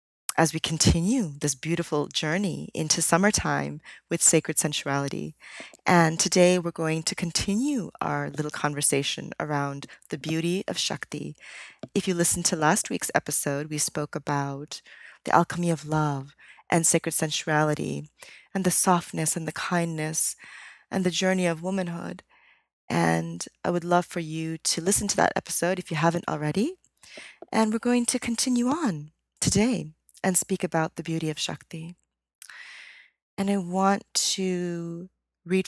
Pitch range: 145-180 Hz